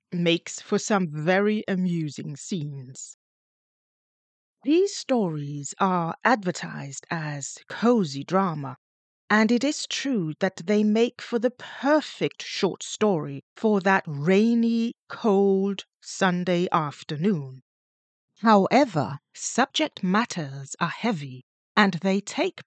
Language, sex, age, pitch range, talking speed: English, female, 40-59, 155-235 Hz, 105 wpm